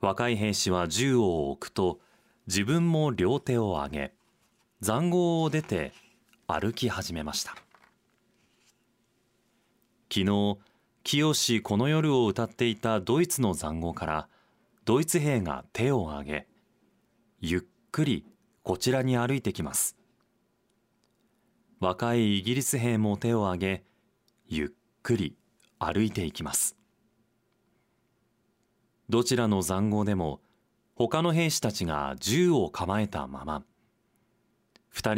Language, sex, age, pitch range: Japanese, male, 30-49, 90-120 Hz